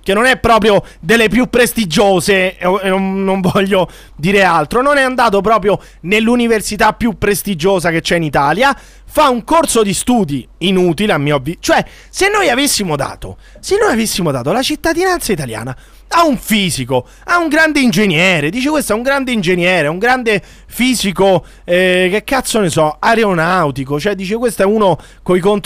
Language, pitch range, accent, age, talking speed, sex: Italian, 185-305 Hz, native, 30-49, 165 wpm, male